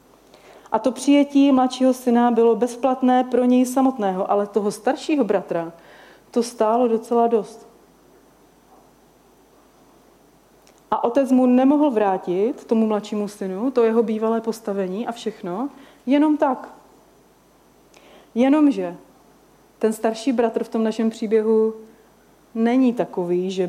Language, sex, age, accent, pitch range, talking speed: Czech, female, 30-49, native, 195-235 Hz, 115 wpm